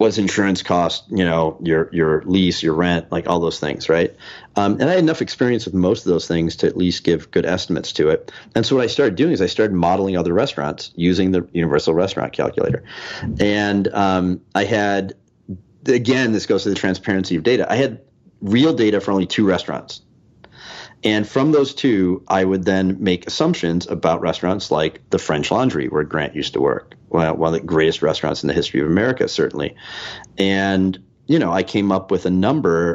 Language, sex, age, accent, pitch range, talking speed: English, male, 40-59, American, 90-110 Hz, 200 wpm